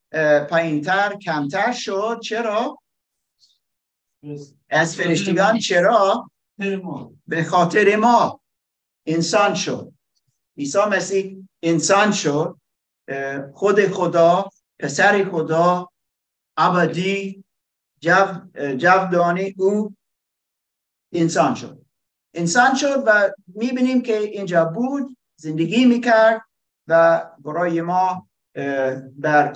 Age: 50-69